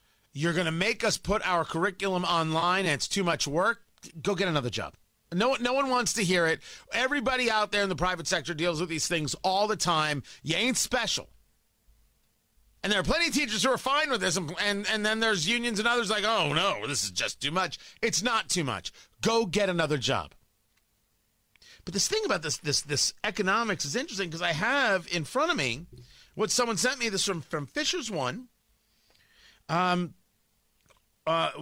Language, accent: English, American